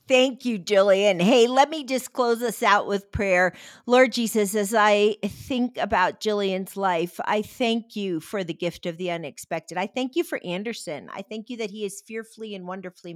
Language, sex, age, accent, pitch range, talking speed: English, female, 50-69, American, 180-220 Hz, 195 wpm